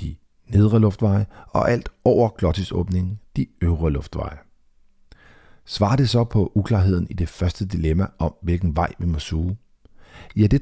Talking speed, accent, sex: 145 wpm, native, male